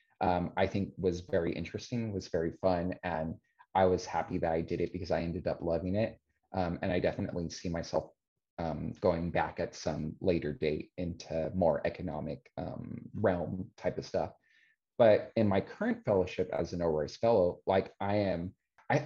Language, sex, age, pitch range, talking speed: English, male, 30-49, 90-110 Hz, 180 wpm